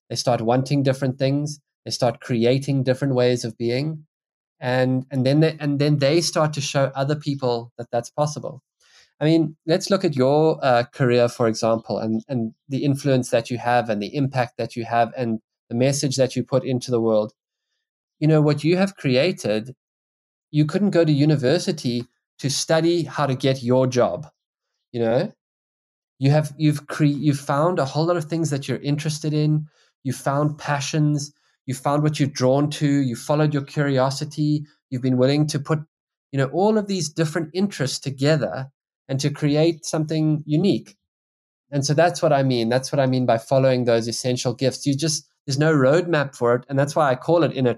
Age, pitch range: 20-39, 125-155 Hz